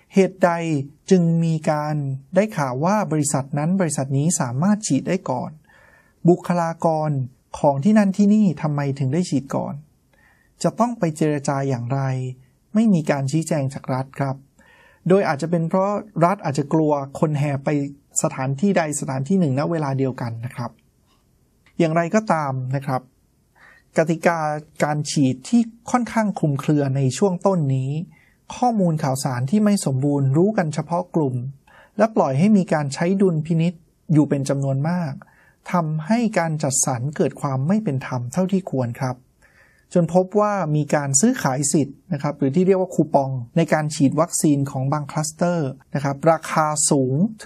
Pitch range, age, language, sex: 135-175 Hz, 20-39, Thai, male